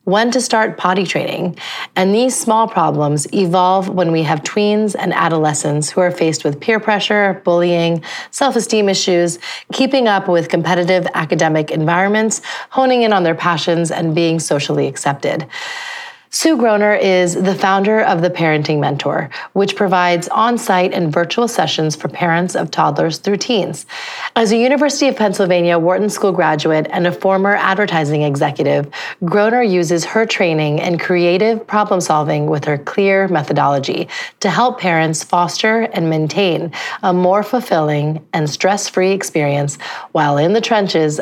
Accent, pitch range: American, 165-210 Hz